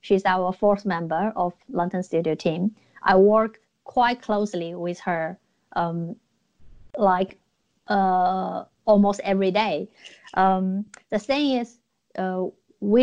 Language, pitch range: English, 185-215 Hz